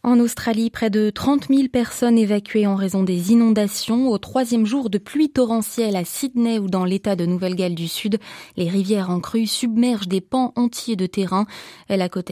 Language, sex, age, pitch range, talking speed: French, female, 20-39, 190-245 Hz, 195 wpm